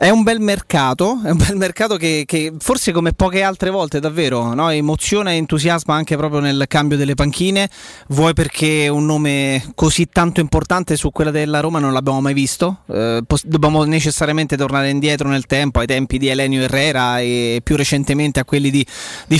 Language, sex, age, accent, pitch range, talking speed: Italian, male, 30-49, native, 145-180 Hz, 185 wpm